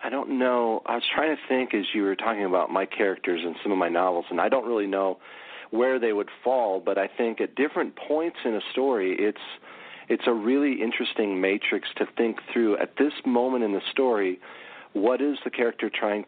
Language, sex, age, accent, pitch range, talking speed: English, male, 40-59, American, 95-125 Hz, 215 wpm